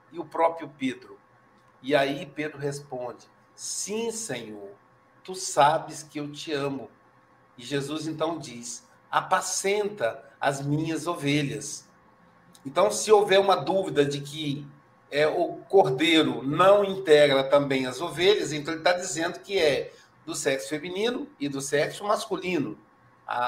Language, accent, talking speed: Portuguese, Brazilian, 135 wpm